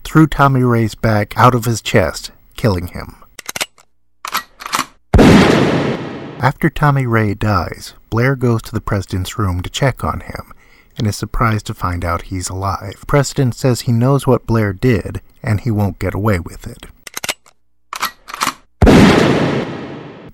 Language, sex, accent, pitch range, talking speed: English, male, American, 100-130 Hz, 140 wpm